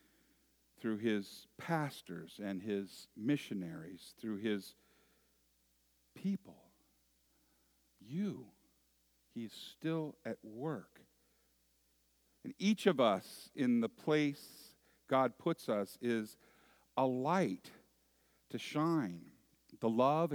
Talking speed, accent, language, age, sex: 90 wpm, American, English, 50-69, male